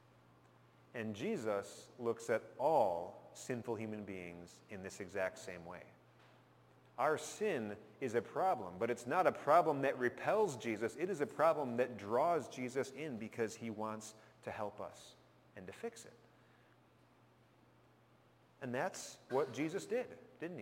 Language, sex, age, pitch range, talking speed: English, male, 30-49, 105-135 Hz, 145 wpm